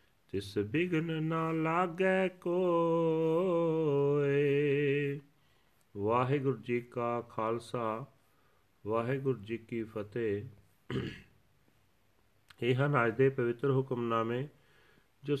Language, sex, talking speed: Punjabi, male, 80 wpm